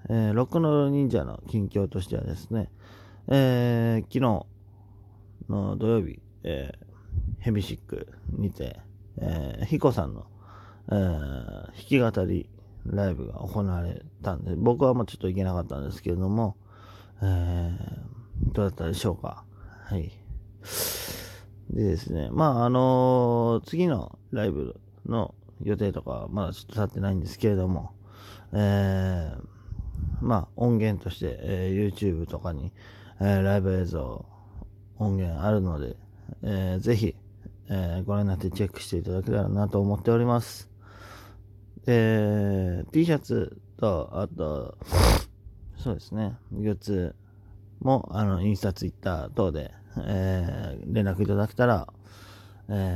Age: 40-59